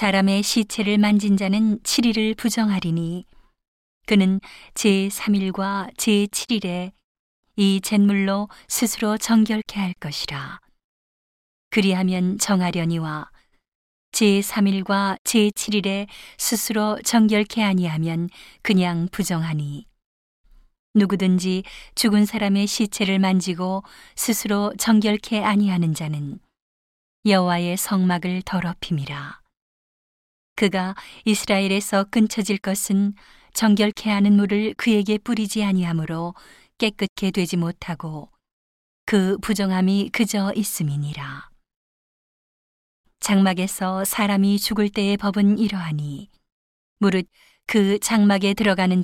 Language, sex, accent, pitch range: Korean, female, native, 185-210 Hz